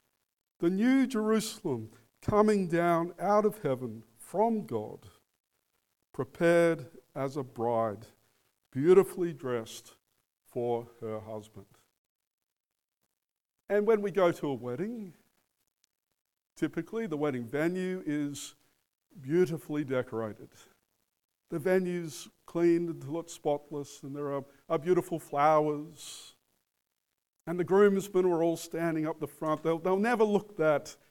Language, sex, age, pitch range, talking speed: English, male, 50-69, 125-170 Hz, 115 wpm